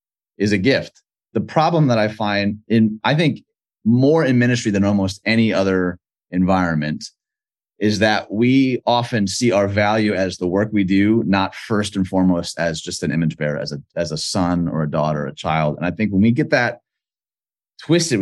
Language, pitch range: English, 100-140 Hz